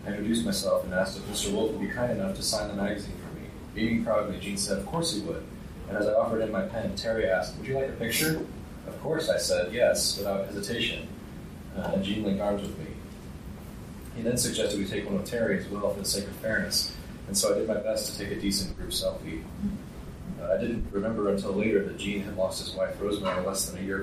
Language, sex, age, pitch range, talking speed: English, male, 30-49, 90-105 Hz, 240 wpm